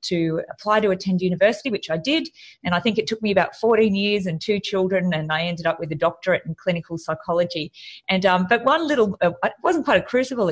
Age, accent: 30-49, Australian